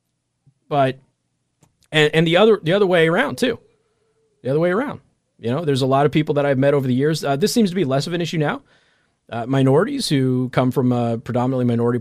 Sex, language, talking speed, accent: male, English, 225 wpm, American